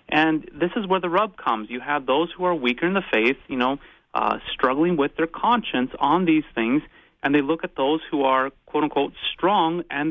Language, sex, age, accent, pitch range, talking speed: English, male, 30-49, American, 120-150 Hz, 215 wpm